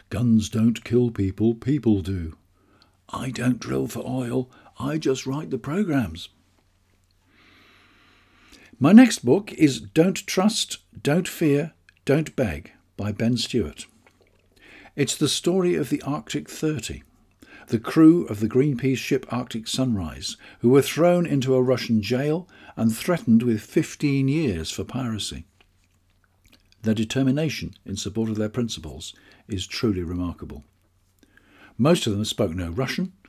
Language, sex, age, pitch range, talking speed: English, male, 60-79, 95-130 Hz, 135 wpm